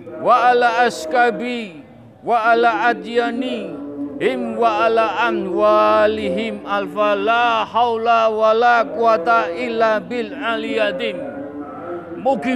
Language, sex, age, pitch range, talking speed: Indonesian, male, 50-69, 175-260 Hz, 85 wpm